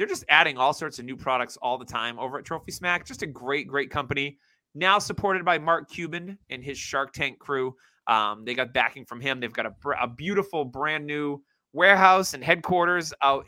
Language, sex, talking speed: English, male, 210 wpm